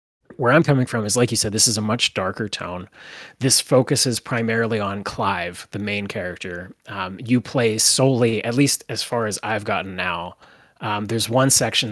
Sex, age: male, 30-49